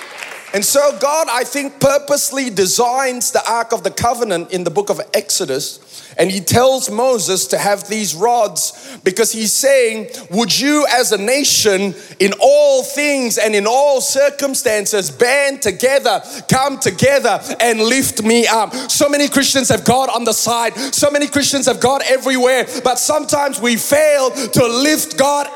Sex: male